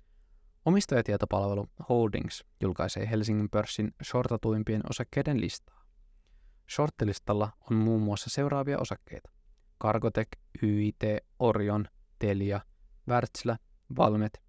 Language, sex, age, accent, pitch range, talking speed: Finnish, male, 20-39, native, 85-120 Hz, 85 wpm